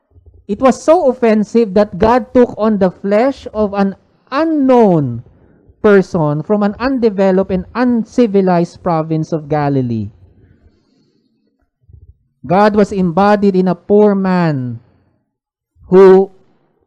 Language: English